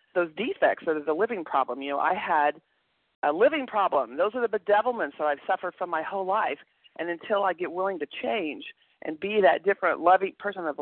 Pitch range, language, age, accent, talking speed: 155-200 Hz, English, 40-59, American, 215 wpm